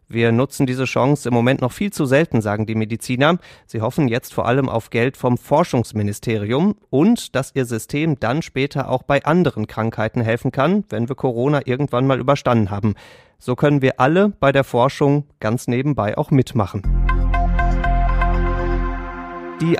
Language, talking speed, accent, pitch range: German, 160 wpm, German, 115-140 Hz